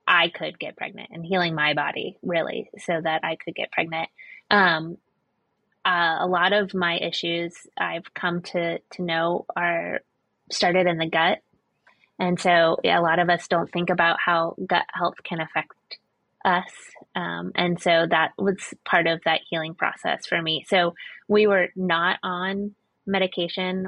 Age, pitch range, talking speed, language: 20-39, 165-195 Hz, 165 wpm, English